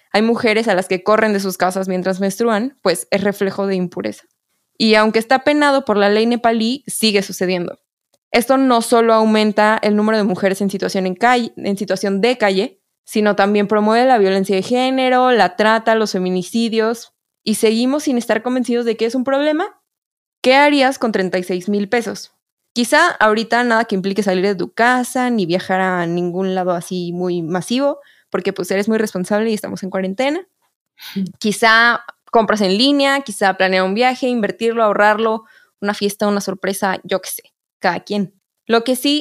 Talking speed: 180 wpm